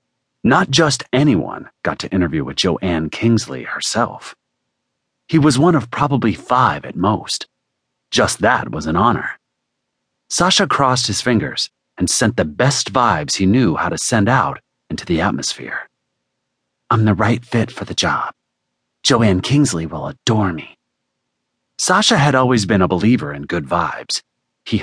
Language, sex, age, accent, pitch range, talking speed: English, male, 40-59, American, 75-115 Hz, 150 wpm